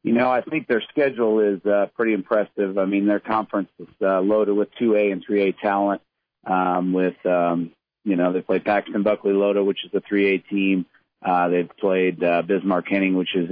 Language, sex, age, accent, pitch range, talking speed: English, male, 40-59, American, 95-110 Hz, 195 wpm